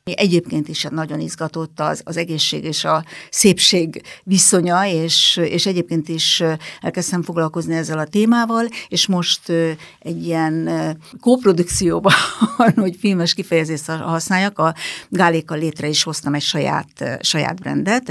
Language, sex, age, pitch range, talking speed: Hungarian, female, 60-79, 160-195 Hz, 125 wpm